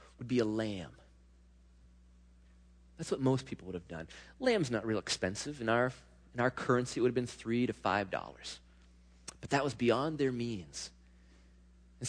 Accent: American